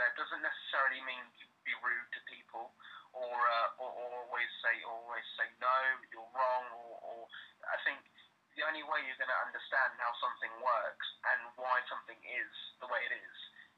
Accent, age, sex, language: British, 20-39, male, English